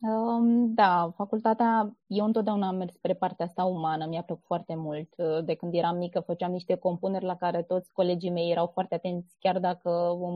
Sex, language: female, Romanian